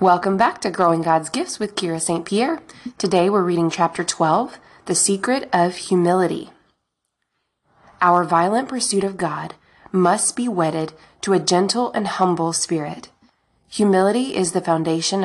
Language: English